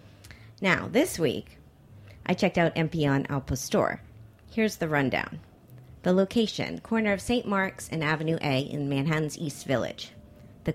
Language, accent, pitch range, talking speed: English, American, 135-200 Hz, 145 wpm